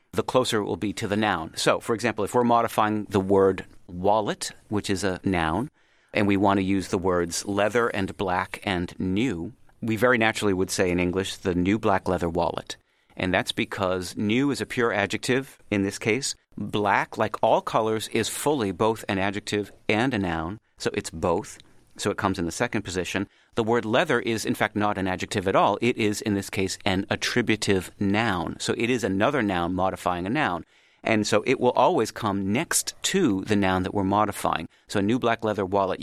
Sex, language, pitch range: male, English, 95-110 Hz